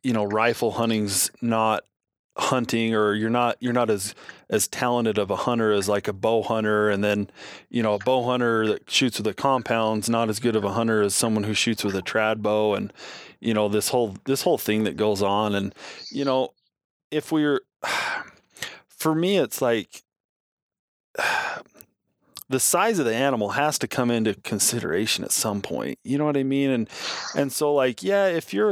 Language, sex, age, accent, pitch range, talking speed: English, male, 20-39, American, 105-130 Hz, 195 wpm